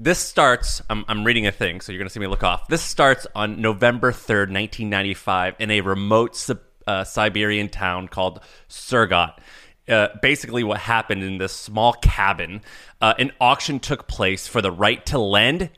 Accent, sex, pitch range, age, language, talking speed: American, male, 100-120 Hz, 30-49, English, 175 wpm